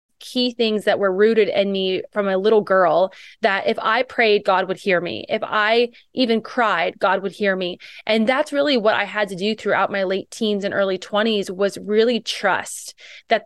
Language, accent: English, American